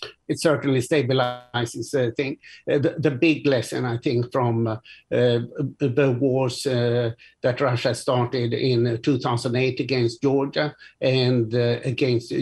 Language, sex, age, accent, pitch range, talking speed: English, male, 60-79, Swedish, 125-145 Hz, 125 wpm